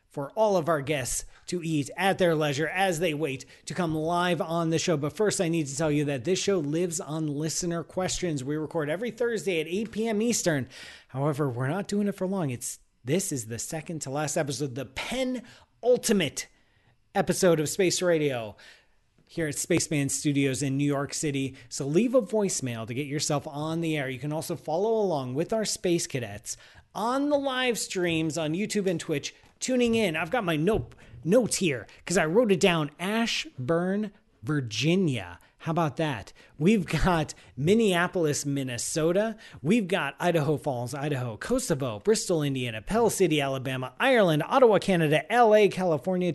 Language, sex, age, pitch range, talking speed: English, male, 30-49, 145-195 Hz, 175 wpm